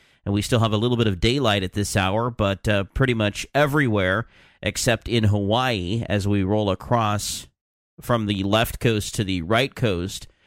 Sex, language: male, English